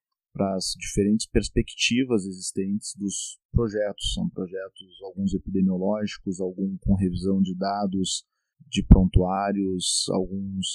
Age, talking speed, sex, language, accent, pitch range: 40-59, 105 wpm, male, Portuguese, Brazilian, 95-115 Hz